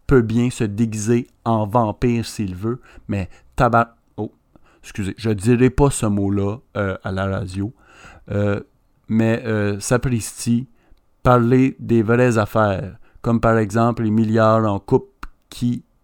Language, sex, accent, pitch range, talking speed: French, male, French, 105-125 Hz, 140 wpm